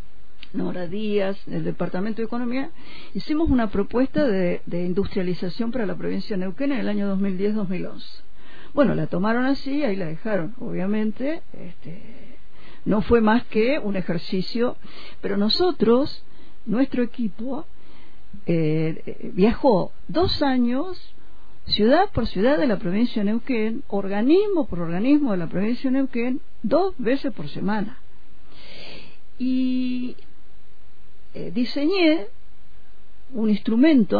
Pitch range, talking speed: 190-255 Hz, 120 wpm